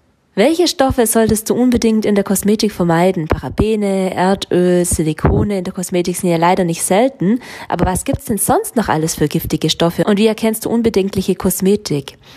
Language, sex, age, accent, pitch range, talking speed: German, female, 20-39, German, 175-225 Hz, 175 wpm